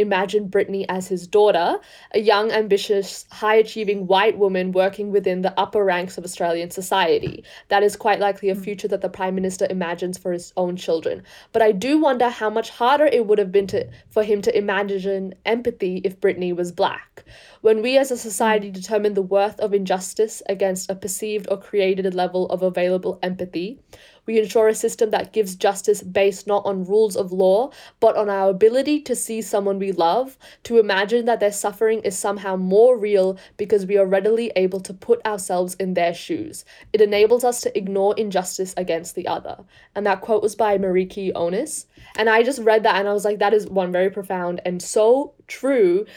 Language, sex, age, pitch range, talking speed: English, female, 10-29, 190-225 Hz, 195 wpm